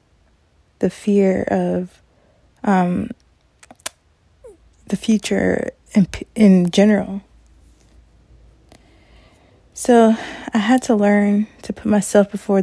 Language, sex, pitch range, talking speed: English, female, 180-210 Hz, 85 wpm